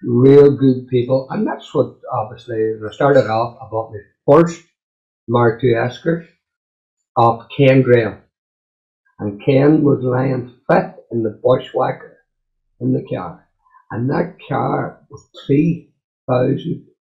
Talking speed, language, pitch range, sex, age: 125 wpm, English, 115-145 Hz, male, 50-69